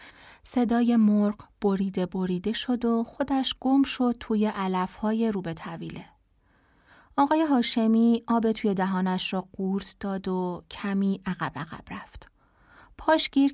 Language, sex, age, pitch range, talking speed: Persian, female, 30-49, 190-230 Hz, 125 wpm